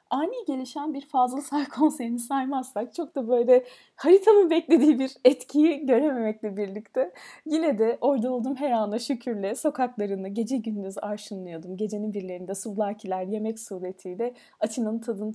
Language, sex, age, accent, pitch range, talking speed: Turkish, female, 30-49, native, 200-260 Hz, 130 wpm